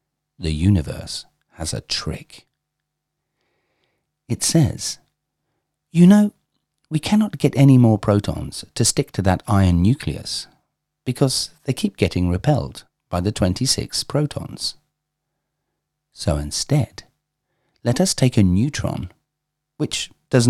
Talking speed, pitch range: 115 wpm, 95-150 Hz